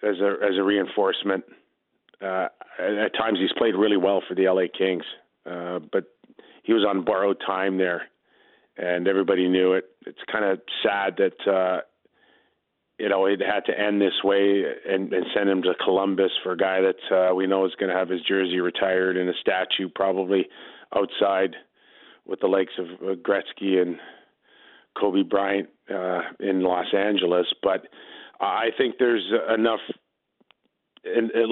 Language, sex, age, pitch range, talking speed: English, male, 40-59, 95-110 Hz, 160 wpm